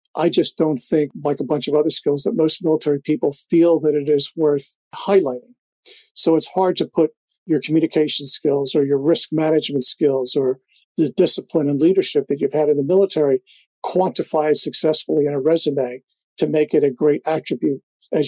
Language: English